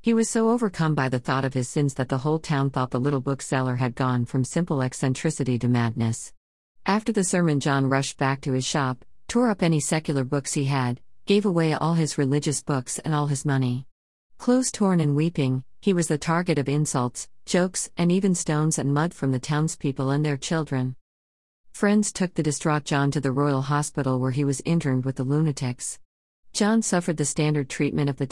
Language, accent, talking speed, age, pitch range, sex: Malayalam, American, 205 wpm, 50-69, 130-160 Hz, female